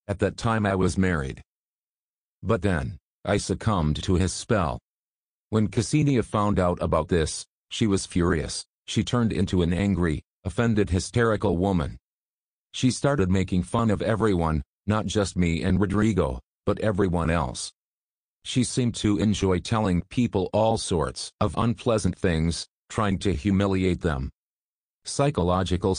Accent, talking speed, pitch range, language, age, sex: American, 140 wpm, 90-110 Hz, English, 40-59, male